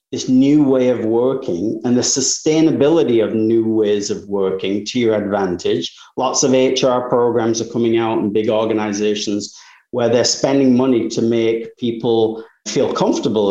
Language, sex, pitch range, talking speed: English, male, 110-160 Hz, 155 wpm